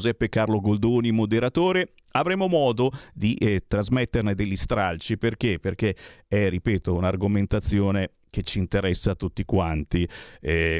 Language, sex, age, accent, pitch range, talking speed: Italian, male, 50-69, native, 95-145 Hz, 130 wpm